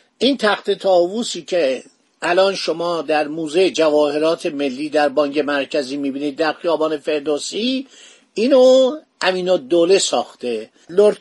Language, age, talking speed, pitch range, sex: Persian, 50-69, 120 wpm, 155-220 Hz, male